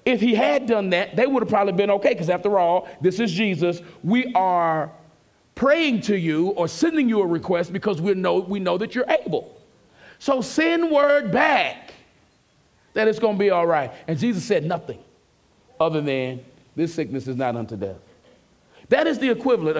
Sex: male